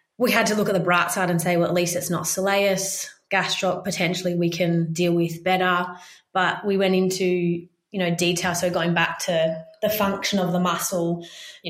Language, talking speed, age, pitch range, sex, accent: English, 205 wpm, 20-39, 175-195 Hz, female, Australian